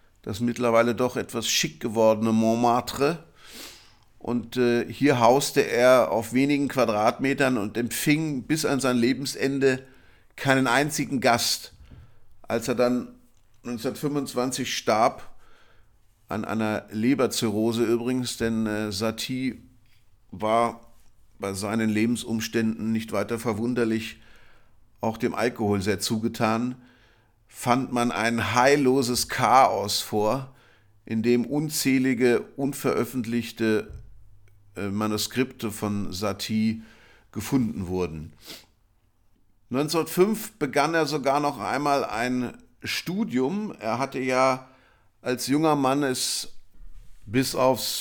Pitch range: 110-130 Hz